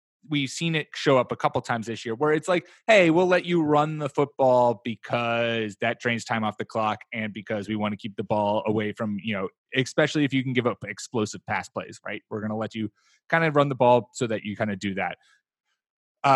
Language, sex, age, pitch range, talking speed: English, male, 20-39, 115-140 Hz, 250 wpm